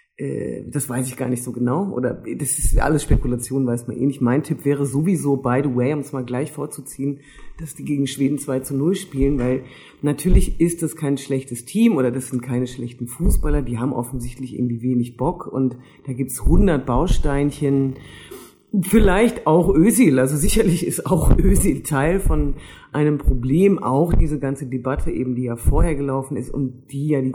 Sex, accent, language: female, German, German